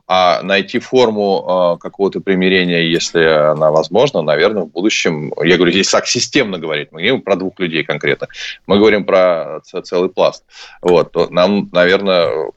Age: 20-39